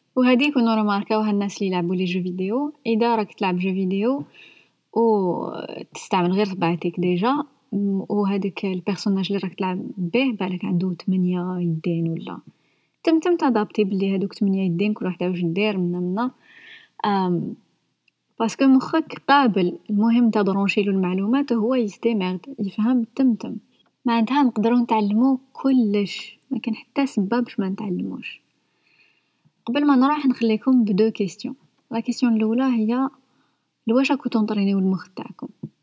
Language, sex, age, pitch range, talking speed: Arabic, female, 20-39, 195-245 Hz, 135 wpm